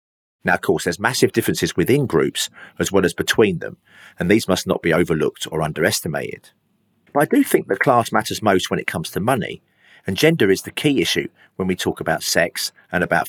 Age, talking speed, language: 40-59, 210 wpm, English